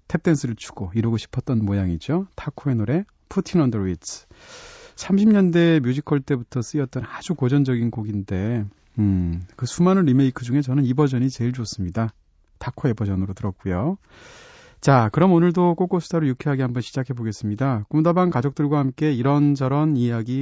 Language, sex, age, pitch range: Korean, male, 30-49, 110-165 Hz